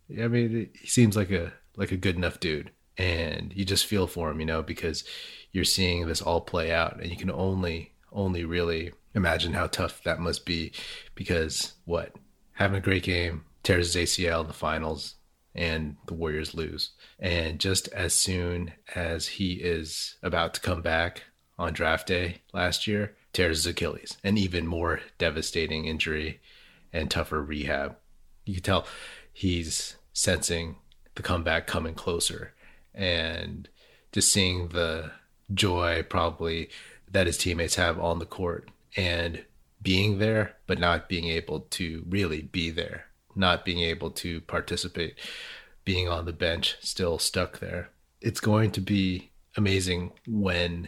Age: 30-49